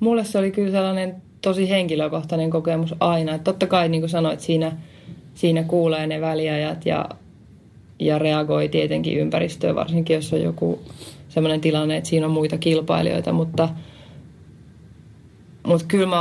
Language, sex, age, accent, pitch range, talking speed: Finnish, female, 20-39, native, 150-170 Hz, 150 wpm